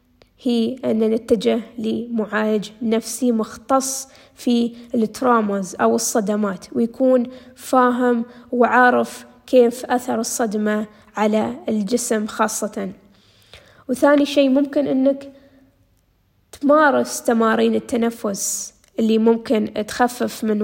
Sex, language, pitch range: female, Arabic, 215-245 Hz